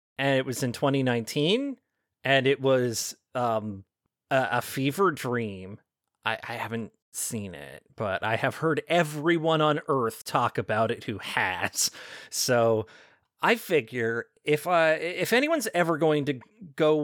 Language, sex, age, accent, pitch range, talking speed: English, male, 30-49, American, 130-195 Hz, 140 wpm